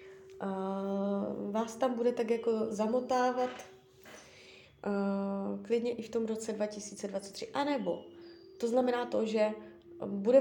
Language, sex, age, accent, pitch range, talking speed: Czech, female, 20-39, native, 195-240 Hz, 115 wpm